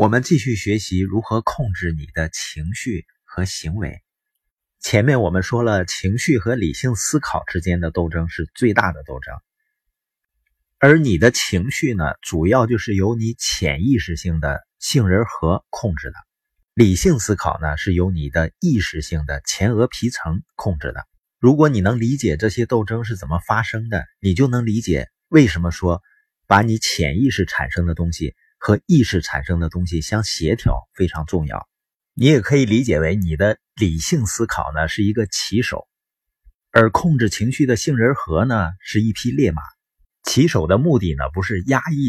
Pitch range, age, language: 85-120 Hz, 30-49, Chinese